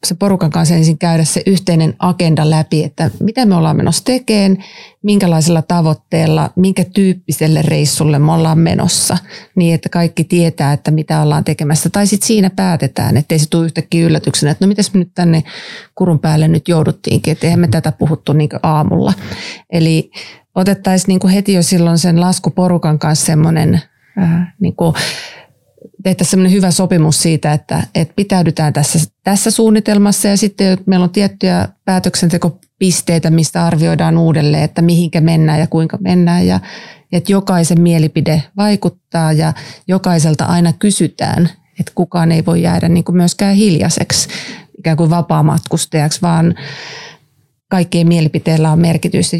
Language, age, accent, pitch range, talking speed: Finnish, 30-49, native, 160-185 Hz, 145 wpm